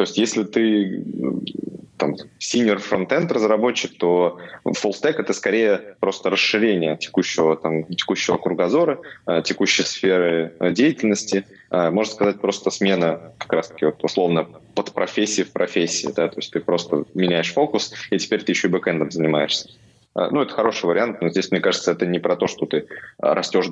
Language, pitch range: Russian, 85-100 Hz